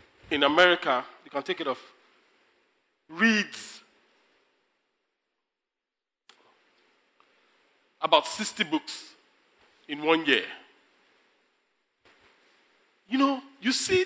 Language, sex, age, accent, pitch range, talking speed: English, male, 40-59, Nigerian, 200-335 Hz, 75 wpm